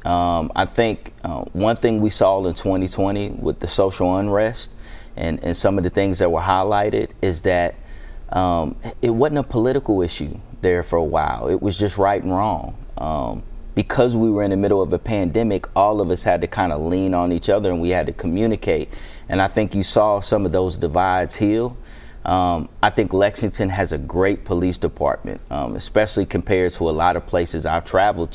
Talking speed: 205 wpm